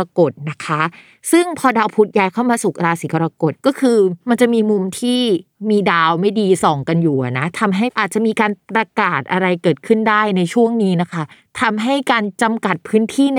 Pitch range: 180-225 Hz